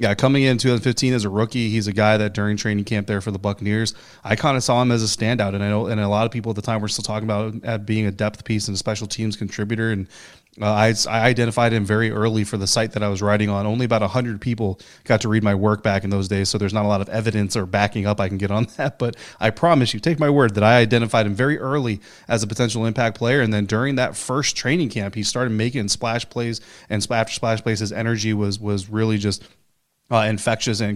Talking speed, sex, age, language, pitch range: 270 wpm, male, 30-49, English, 105-115 Hz